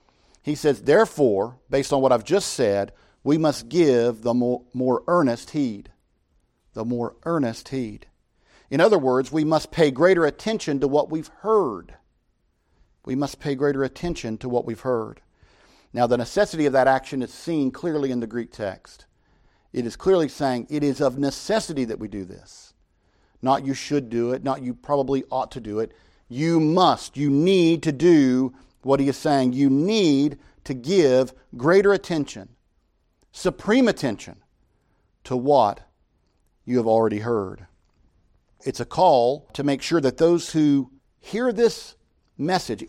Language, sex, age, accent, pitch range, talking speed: English, male, 50-69, American, 115-155 Hz, 160 wpm